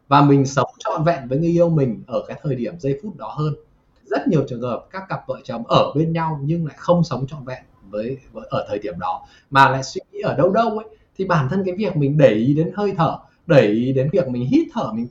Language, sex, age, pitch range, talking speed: Vietnamese, male, 20-39, 135-175 Hz, 265 wpm